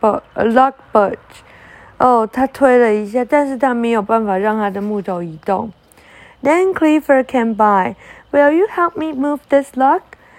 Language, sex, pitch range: Chinese, female, 200-270 Hz